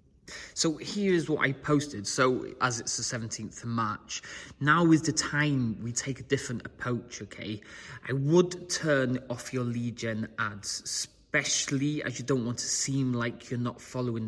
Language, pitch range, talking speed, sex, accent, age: English, 110-135 Hz, 170 wpm, male, British, 30-49